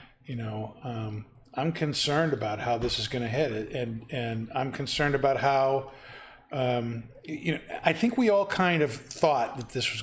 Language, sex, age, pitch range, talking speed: English, male, 50-69, 120-140 Hz, 180 wpm